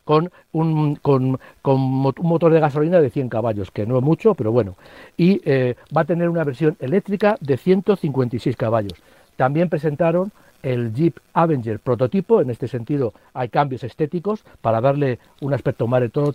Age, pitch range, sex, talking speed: 60-79, 125-165 Hz, male, 175 wpm